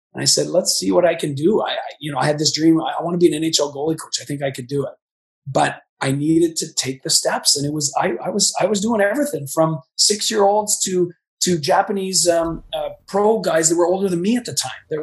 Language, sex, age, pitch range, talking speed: English, male, 30-49, 145-175 Hz, 265 wpm